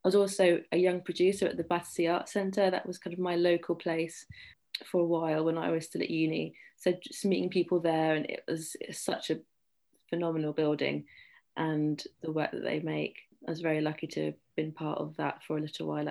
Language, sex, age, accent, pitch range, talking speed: English, female, 20-39, British, 160-185 Hz, 225 wpm